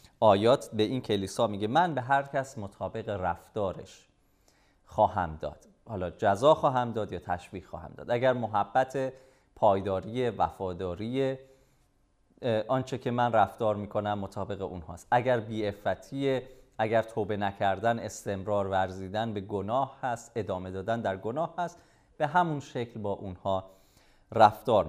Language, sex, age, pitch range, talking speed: Persian, male, 30-49, 100-125 Hz, 130 wpm